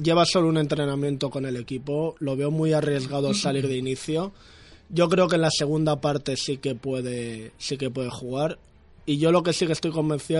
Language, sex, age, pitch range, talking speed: Spanish, male, 20-39, 130-155 Hz, 210 wpm